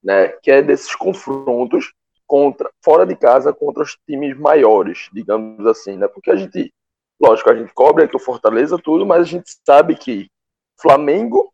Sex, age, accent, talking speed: male, 20-39, Brazilian, 170 wpm